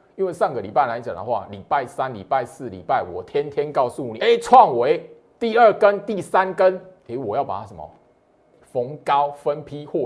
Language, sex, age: Chinese, male, 30-49